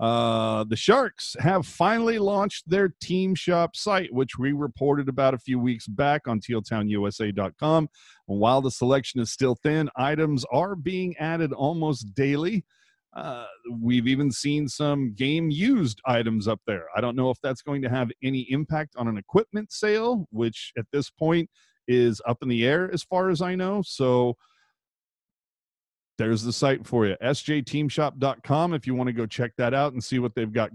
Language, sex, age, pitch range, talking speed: English, male, 40-59, 120-165 Hz, 175 wpm